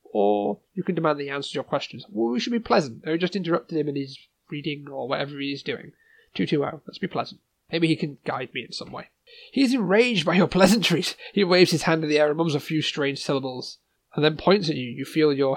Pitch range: 140-190 Hz